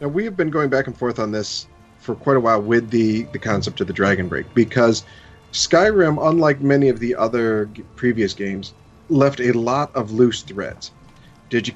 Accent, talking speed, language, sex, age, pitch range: American, 200 wpm, English, male, 40-59, 105-130 Hz